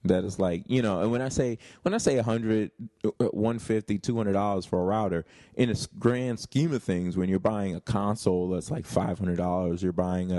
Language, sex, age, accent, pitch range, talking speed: English, male, 20-39, American, 90-115 Hz, 245 wpm